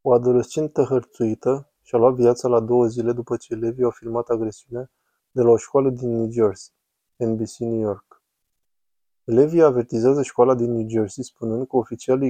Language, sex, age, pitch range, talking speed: Romanian, male, 20-39, 115-125 Hz, 165 wpm